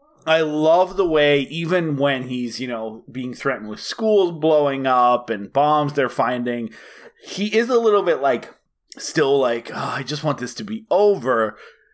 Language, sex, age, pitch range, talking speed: English, male, 30-49, 115-175 Hz, 175 wpm